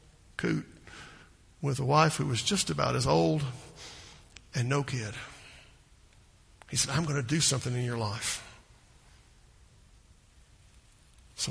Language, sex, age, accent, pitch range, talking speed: English, male, 50-69, American, 120-160 Hz, 120 wpm